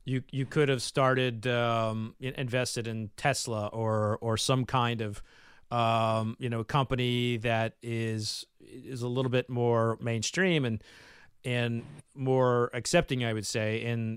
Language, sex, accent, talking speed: English, male, American, 145 wpm